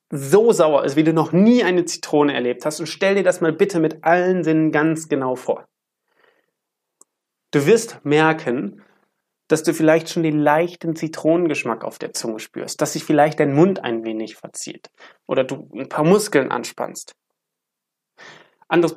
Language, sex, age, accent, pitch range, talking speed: German, male, 30-49, German, 140-175 Hz, 165 wpm